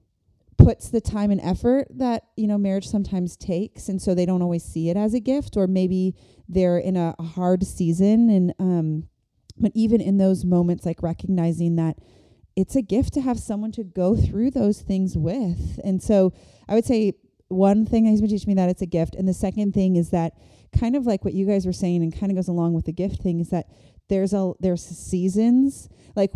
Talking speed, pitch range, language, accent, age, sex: 220 wpm, 180-220 Hz, English, American, 30-49, female